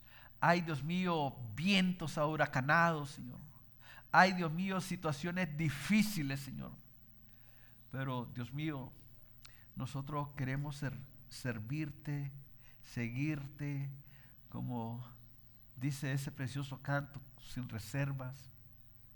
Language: English